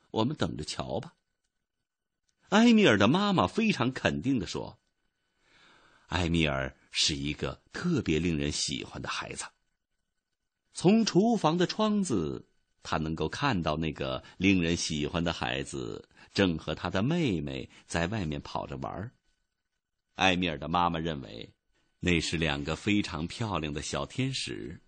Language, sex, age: Chinese, male, 50-69